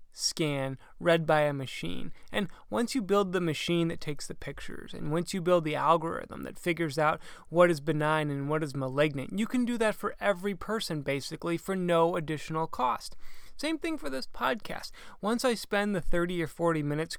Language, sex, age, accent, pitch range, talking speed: English, male, 20-39, American, 165-220 Hz, 195 wpm